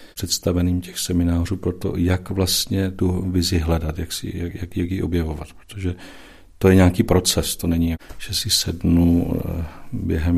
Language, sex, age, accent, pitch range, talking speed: Czech, male, 40-59, native, 85-90 Hz, 160 wpm